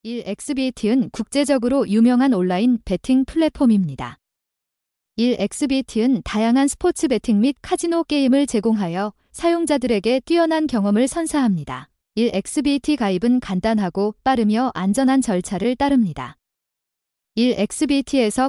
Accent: native